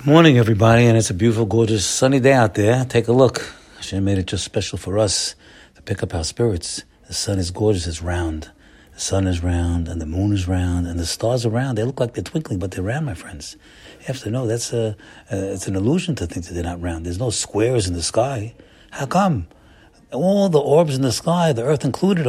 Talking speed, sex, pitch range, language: 235 wpm, male, 105-135 Hz, English